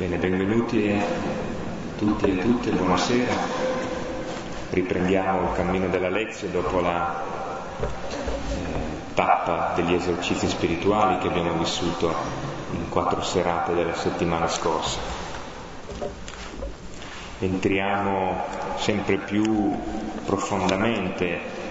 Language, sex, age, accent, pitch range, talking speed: Italian, male, 30-49, native, 90-95 Hz, 85 wpm